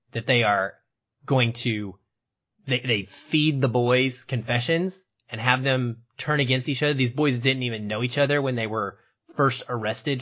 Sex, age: male, 20-39